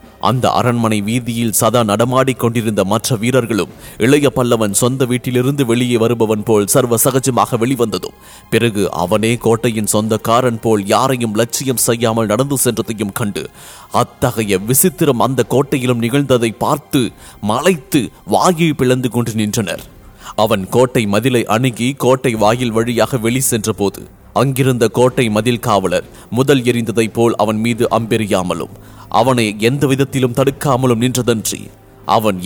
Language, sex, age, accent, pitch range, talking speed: English, male, 30-49, Indian, 115-135 Hz, 120 wpm